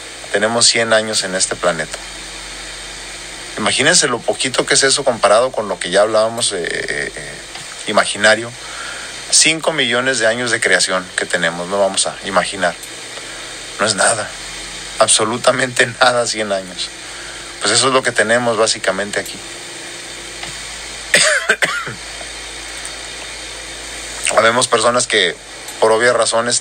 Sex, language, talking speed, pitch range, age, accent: male, Spanish, 120 wpm, 105-125 Hz, 40-59, Mexican